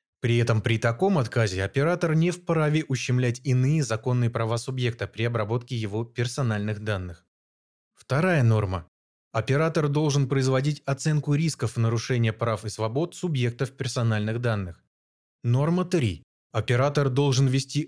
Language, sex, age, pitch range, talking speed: Russian, male, 20-39, 115-145 Hz, 125 wpm